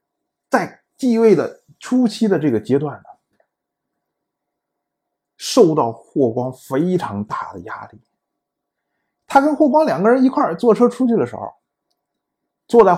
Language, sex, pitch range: Chinese, male, 145-230 Hz